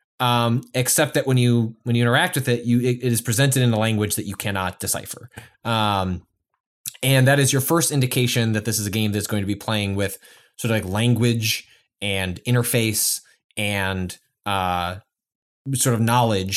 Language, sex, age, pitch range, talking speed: English, male, 20-39, 105-130 Hz, 185 wpm